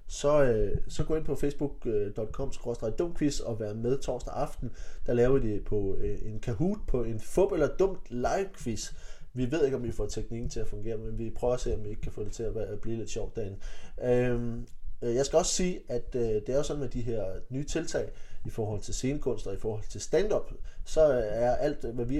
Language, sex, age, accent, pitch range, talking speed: Danish, male, 20-39, native, 110-140 Hz, 225 wpm